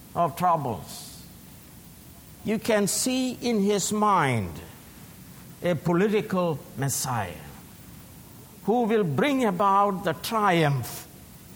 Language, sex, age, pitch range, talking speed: English, male, 60-79, 150-235 Hz, 90 wpm